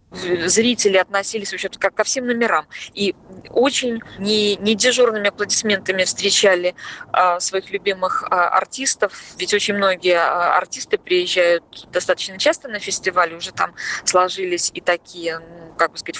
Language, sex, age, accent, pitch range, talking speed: Russian, female, 20-39, native, 175-215 Hz, 115 wpm